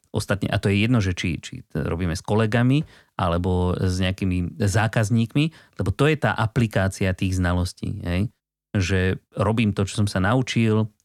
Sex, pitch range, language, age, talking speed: male, 95-125 Hz, Slovak, 30-49, 170 wpm